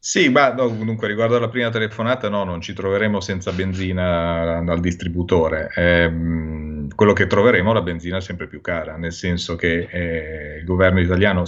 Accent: native